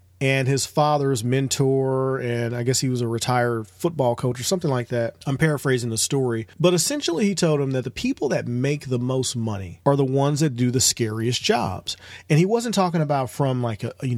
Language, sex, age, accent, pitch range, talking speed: English, male, 40-59, American, 115-145 Hz, 215 wpm